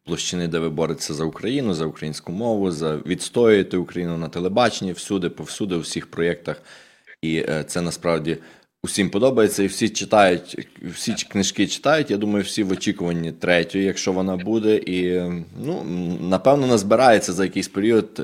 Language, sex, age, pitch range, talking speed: Ukrainian, male, 20-39, 85-110 Hz, 150 wpm